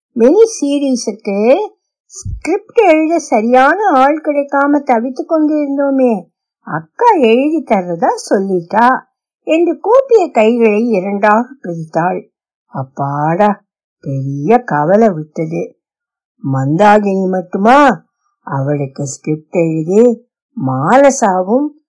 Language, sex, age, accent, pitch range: Tamil, female, 60-79, native, 200-305 Hz